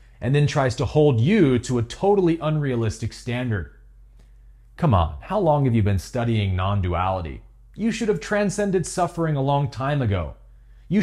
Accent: American